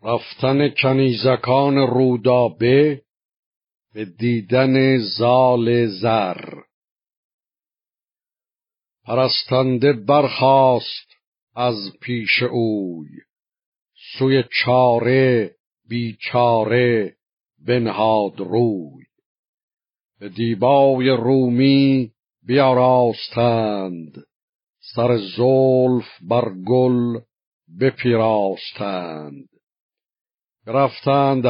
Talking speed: 50 wpm